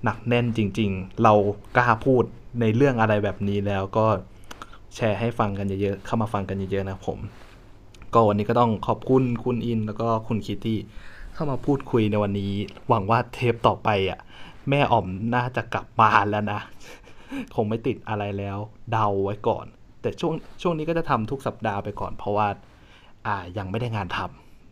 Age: 20-39